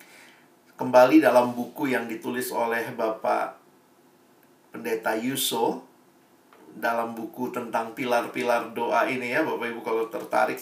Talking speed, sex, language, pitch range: 115 wpm, male, Indonesian, 130-220 Hz